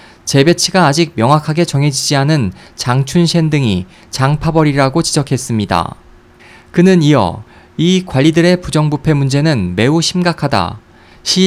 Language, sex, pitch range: Korean, male, 115-165 Hz